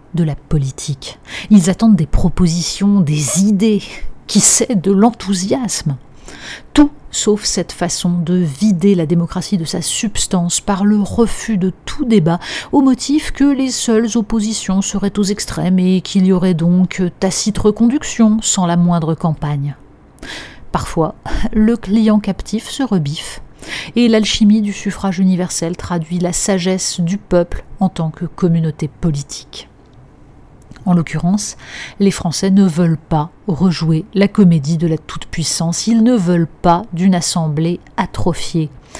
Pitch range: 165-210 Hz